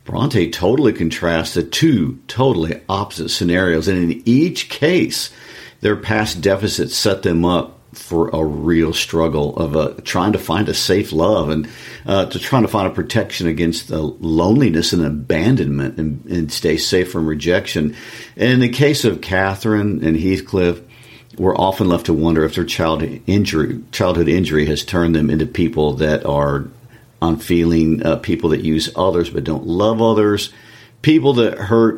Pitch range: 80-110 Hz